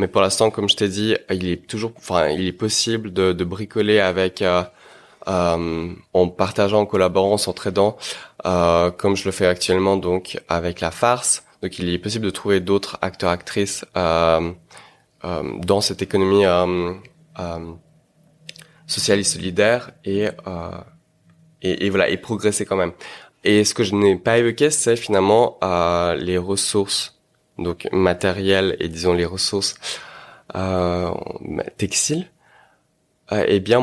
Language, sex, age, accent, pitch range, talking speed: French, male, 20-39, French, 90-105 Hz, 155 wpm